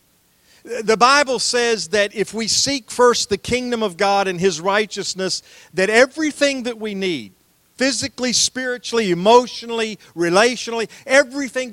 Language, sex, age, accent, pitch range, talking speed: English, male, 50-69, American, 185-230 Hz, 130 wpm